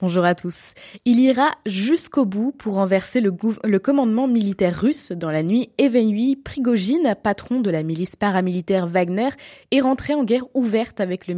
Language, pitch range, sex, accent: French, 180-250 Hz, female, French